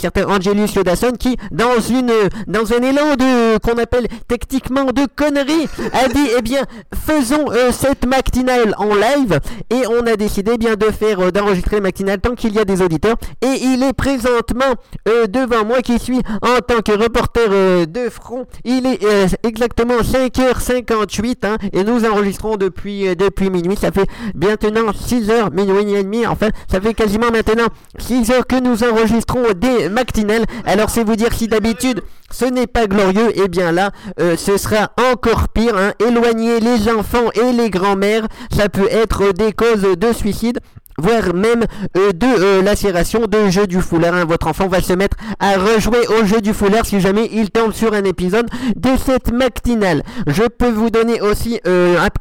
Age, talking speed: 50-69, 180 wpm